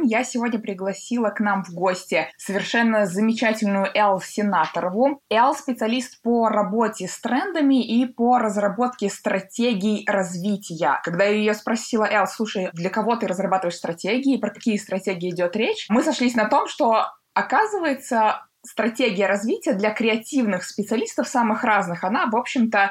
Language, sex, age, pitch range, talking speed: Russian, female, 20-39, 195-235 Hz, 140 wpm